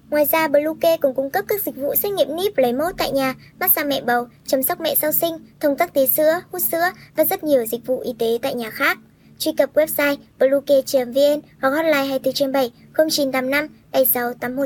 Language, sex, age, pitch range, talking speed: Vietnamese, male, 20-39, 265-315 Hz, 215 wpm